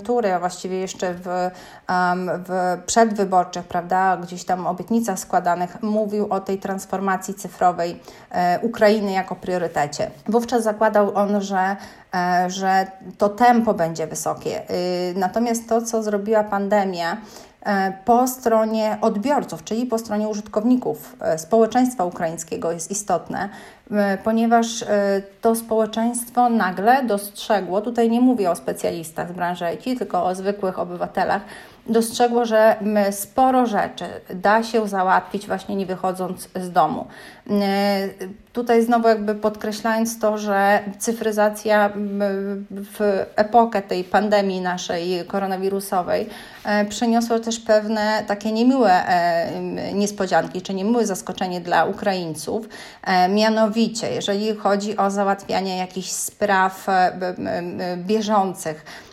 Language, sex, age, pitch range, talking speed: Polish, female, 30-49, 185-220 Hz, 105 wpm